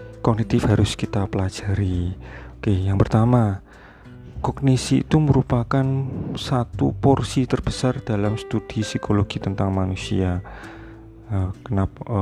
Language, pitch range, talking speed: Indonesian, 100-125 Hz, 95 wpm